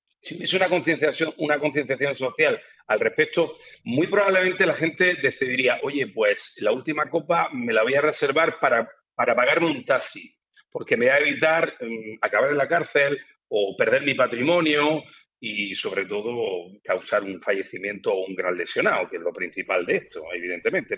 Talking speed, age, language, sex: 170 wpm, 40-59, Spanish, male